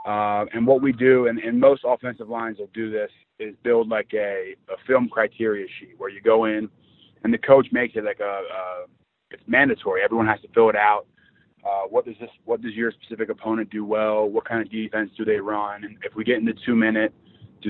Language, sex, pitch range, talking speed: English, male, 110-125 Hz, 225 wpm